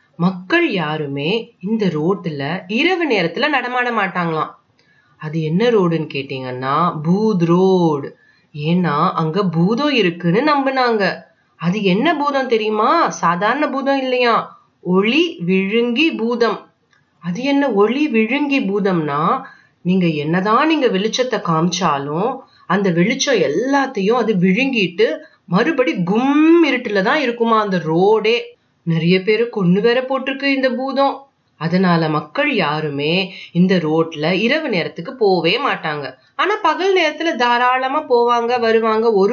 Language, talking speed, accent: Tamil, 100 wpm, native